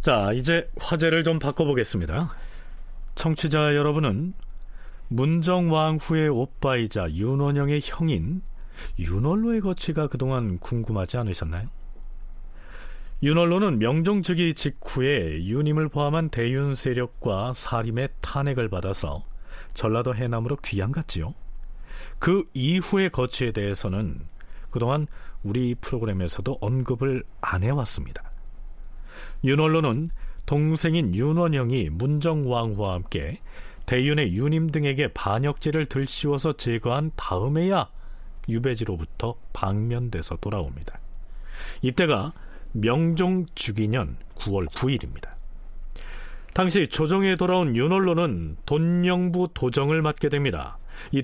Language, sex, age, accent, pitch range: Korean, male, 40-59, native, 110-155 Hz